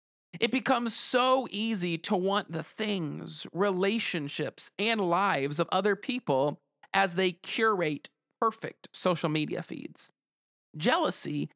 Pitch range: 150-195 Hz